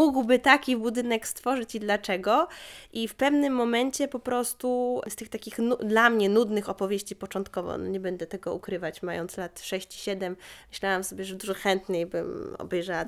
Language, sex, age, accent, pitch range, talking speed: Polish, female, 20-39, native, 195-240 Hz, 155 wpm